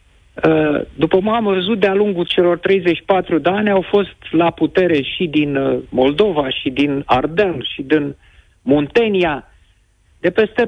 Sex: male